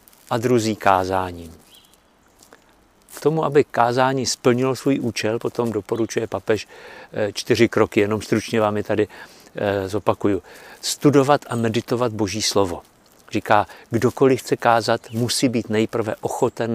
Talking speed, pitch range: 120 wpm, 105-125 Hz